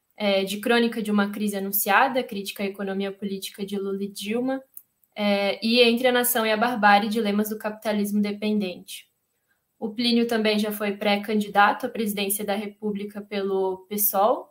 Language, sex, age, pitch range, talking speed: Portuguese, female, 10-29, 200-230 Hz, 155 wpm